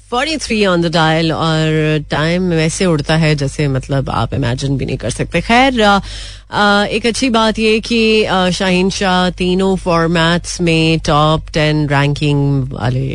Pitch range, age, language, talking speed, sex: 130-160 Hz, 30-49, Hindi, 150 wpm, female